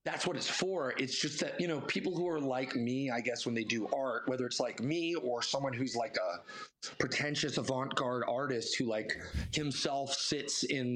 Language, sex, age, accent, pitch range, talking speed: English, male, 30-49, American, 130-165 Hz, 205 wpm